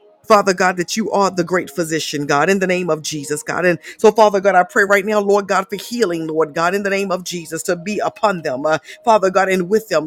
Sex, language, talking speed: female, English, 260 wpm